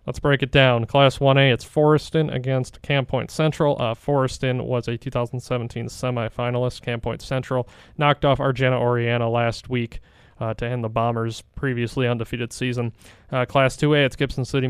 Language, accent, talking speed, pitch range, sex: English, American, 165 wpm, 120-135 Hz, male